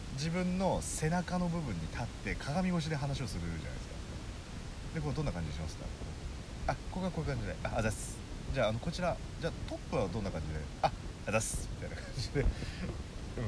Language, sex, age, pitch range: Japanese, male, 40-59, 80-130 Hz